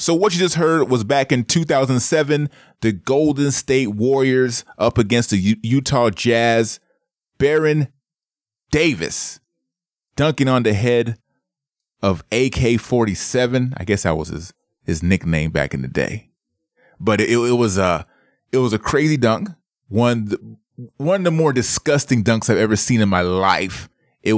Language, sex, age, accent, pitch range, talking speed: English, male, 30-49, American, 100-140 Hz, 155 wpm